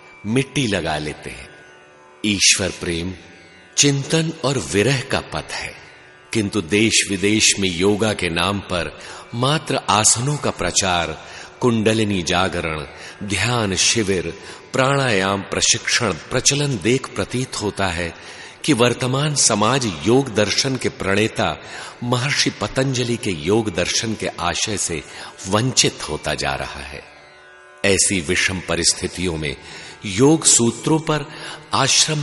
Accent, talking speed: native, 115 wpm